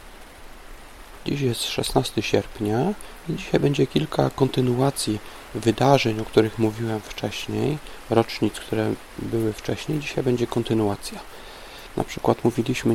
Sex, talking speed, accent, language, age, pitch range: male, 110 wpm, native, Polish, 40-59, 110-130 Hz